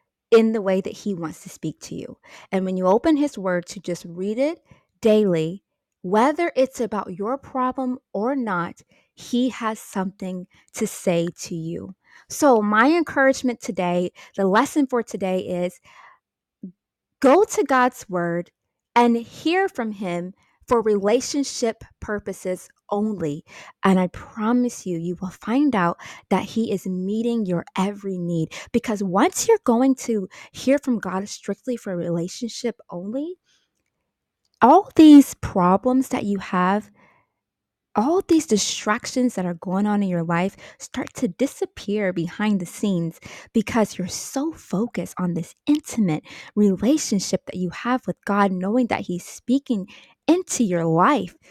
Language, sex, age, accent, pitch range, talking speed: English, female, 20-39, American, 185-250 Hz, 145 wpm